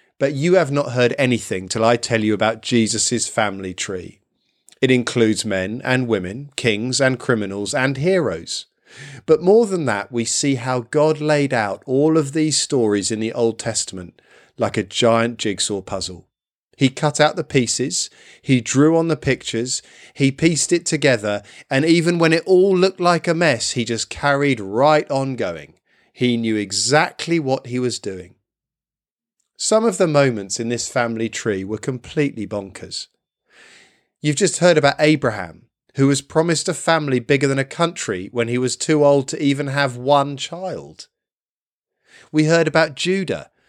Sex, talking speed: male, 170 wpm